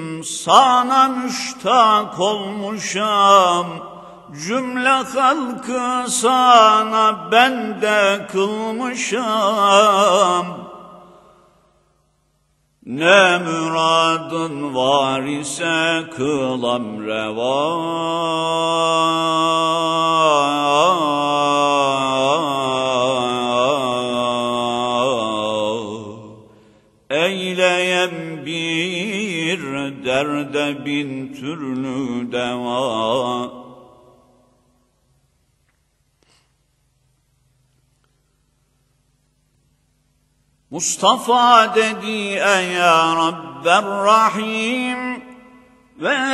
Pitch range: 140-210 Hz